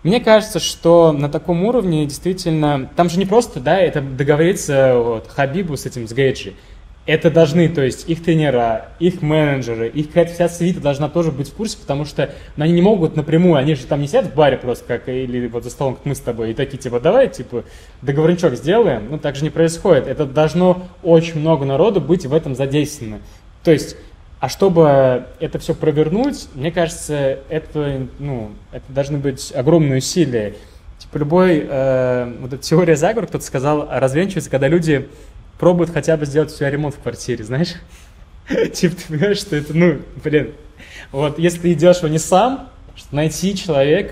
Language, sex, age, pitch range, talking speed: Russian, male, 20-39, 125-165 Hz, 180 wpm